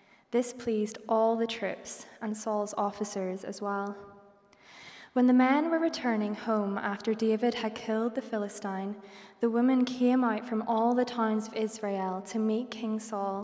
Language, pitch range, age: English, 205-240 Hz, 20-39